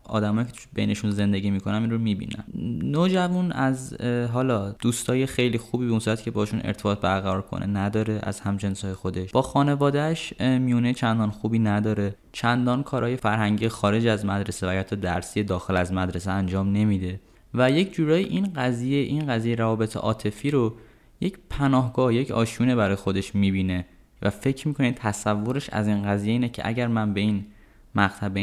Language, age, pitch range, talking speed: Persian, 10-29, 95-125 Hz, 165 wpm